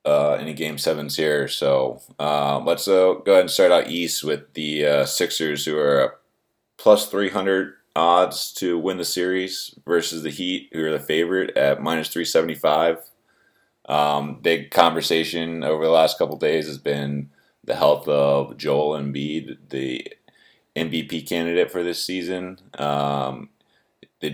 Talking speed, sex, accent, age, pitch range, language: 155 wpm, male, American, 20-39, 70-85 Hz, English